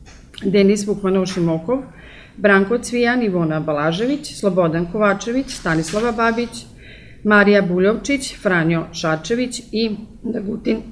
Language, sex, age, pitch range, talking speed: Croatian, female, 40-59, 165-205 Hz, 95 wpm